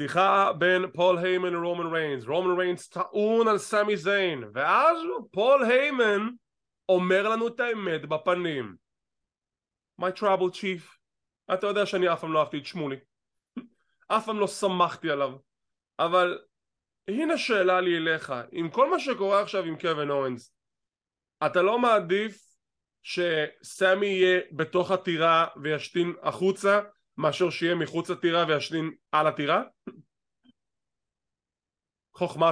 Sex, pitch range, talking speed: male, 155-210 Hz, 100 wpm